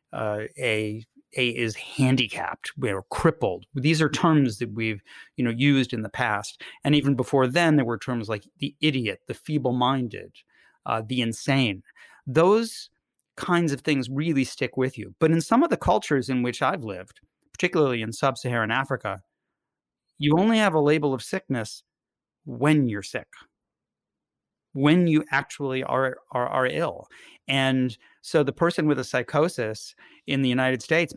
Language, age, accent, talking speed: English, 30-49, American, 160 wpm